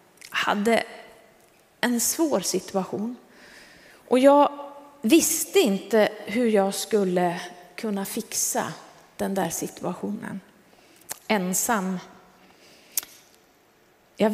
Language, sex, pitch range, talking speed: Swedish, female, 190-250 Hz, 80 wpm